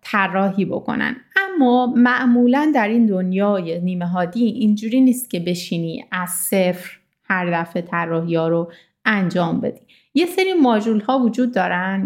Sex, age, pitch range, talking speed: female, 30-49, 195-250 Hz, 140 wpm